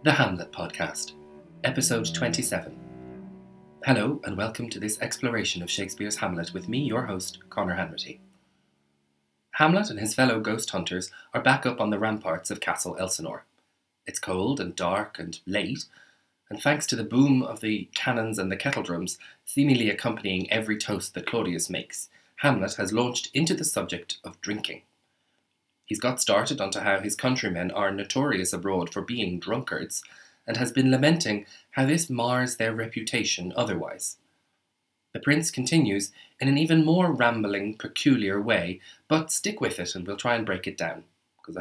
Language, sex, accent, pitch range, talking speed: English, male, Irish, 95-125 Hz, 165 wpm